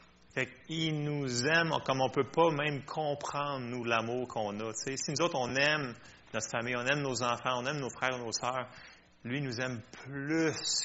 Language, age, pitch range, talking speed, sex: French, 30-49, 105-140 Hz, 205 wpm, male